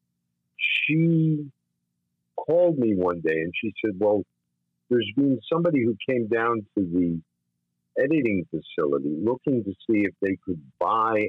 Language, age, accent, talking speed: English, 50-69, American, 140 wpm